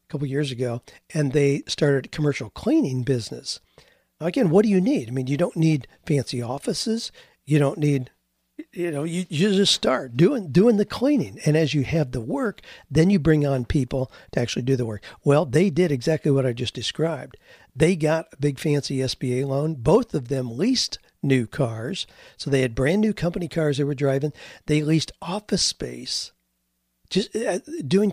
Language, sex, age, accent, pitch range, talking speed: English, male, 50-69, American, 130-160 Hz, 195 wpm